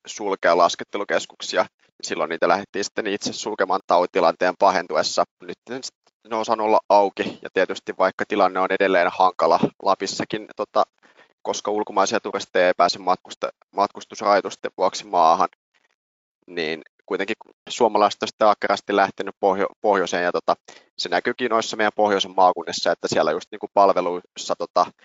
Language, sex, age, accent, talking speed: Finnish, male, 20-39, native, 120 wpm